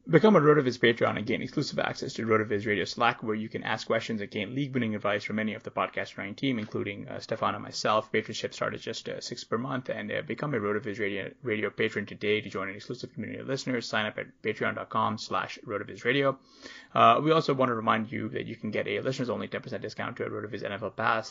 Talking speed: 225 wpm